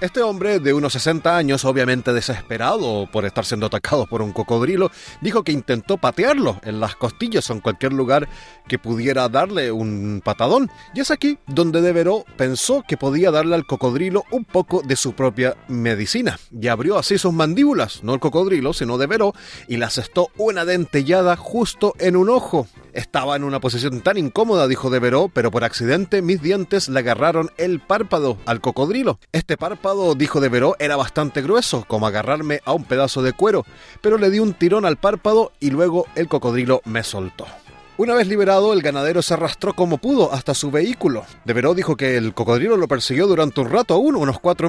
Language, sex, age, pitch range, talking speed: Spanish, male, 30-49, 125-180 Hz, 190 wpm